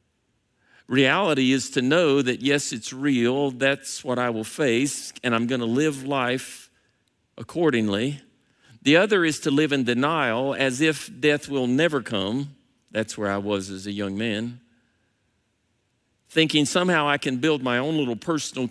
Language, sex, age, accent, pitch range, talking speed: English, male, 50-69, American, 115-145 Hz, 160 wpm